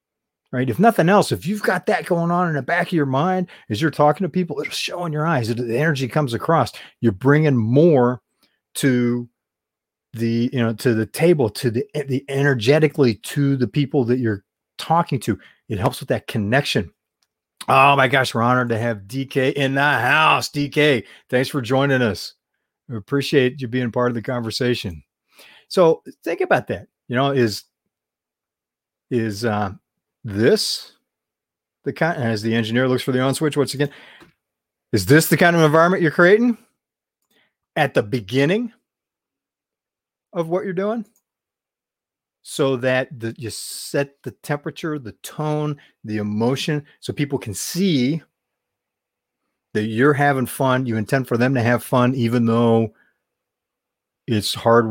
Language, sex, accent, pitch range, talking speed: English, male, American, 115-150 Hz, 160 wpm